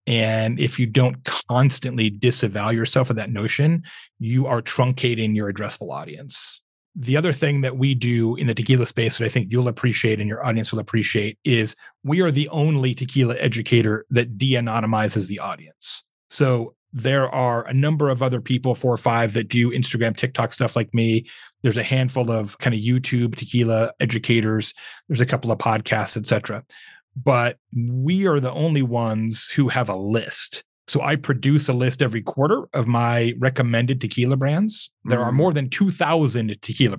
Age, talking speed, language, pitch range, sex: 30-49, 180 wpm, English, 115-140 Hz, male